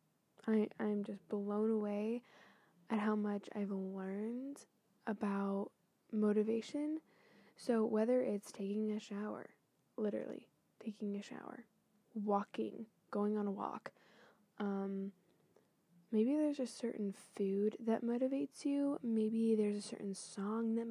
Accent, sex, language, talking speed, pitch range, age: American, female, English, 120 wpm, 200-225 Hz, 10-29